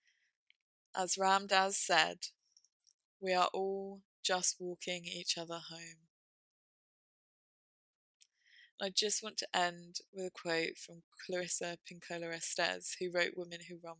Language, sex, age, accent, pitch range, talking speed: English, female, 20-39, British, 170-195 Hz, 125 wpm